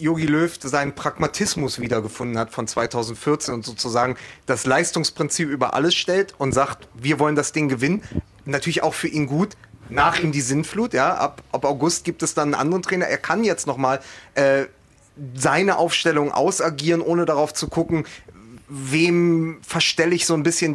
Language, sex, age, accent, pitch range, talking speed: German, male, 30-49, German, 140-170 Hz, 165 wpm